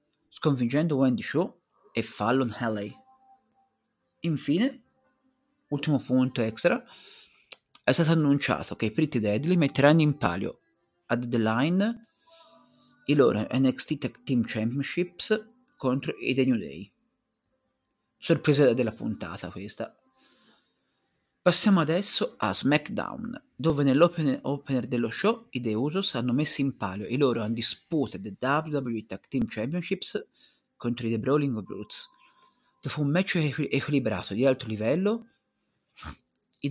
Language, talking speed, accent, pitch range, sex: Italian, 125 wpm, native, 120-180 Hz, male